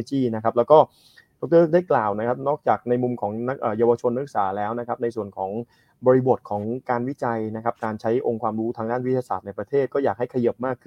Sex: male